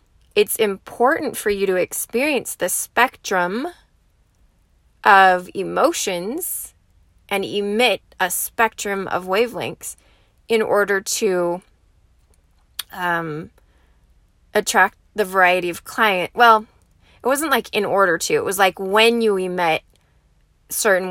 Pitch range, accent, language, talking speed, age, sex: 175-230 Hz, American, English, 110 wpm, 20-39, female